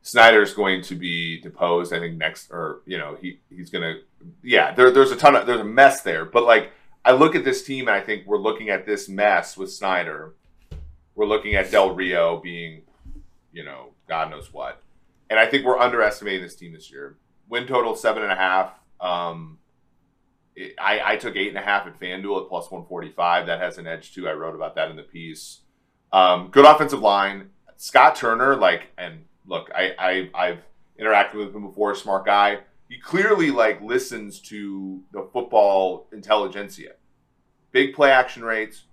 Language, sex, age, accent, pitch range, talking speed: English, male, 30-49, American, 90-115 Hz, 180 wpm